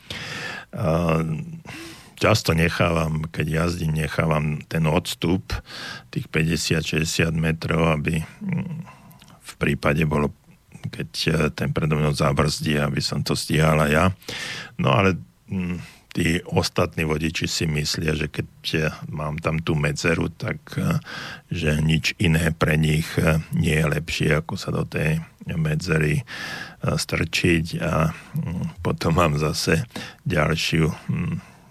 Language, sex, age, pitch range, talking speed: Slovak, male, 50-69, 80-100 Hz, 105 wpm